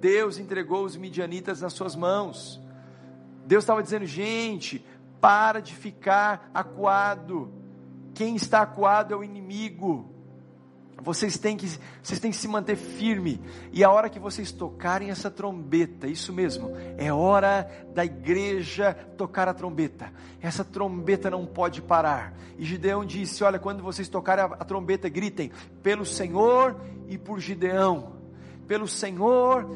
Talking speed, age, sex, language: 135 wpm, 50-69, male, Portuguese